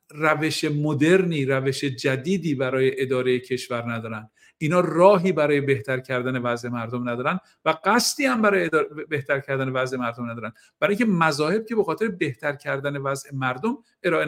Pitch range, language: 140-180 Hz, Persian